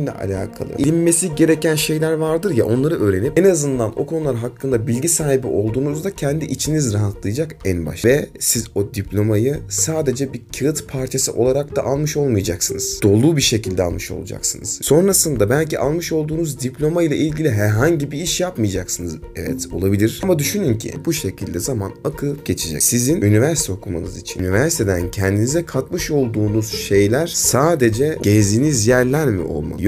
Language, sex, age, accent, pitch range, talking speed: Turkish, male, 30-49, native, 105-155 Hz, 150 wpm